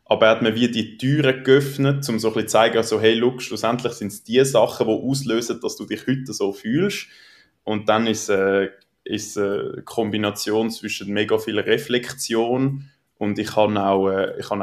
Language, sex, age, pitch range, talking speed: German, male, 20-39, 100-120 Hz, 200 wpm